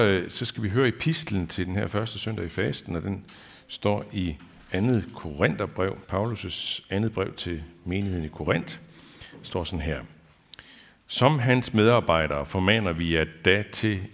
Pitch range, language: 85-110 Hz, Danish